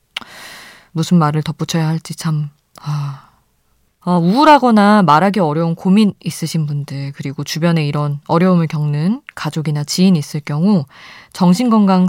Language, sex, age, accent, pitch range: Korean, female, 20-39, native, 150-190 Hz